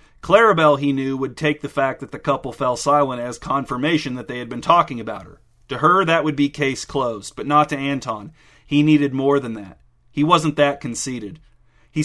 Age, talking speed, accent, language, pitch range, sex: 30-49, 210 wpm, American, English, 125-145 Hz, male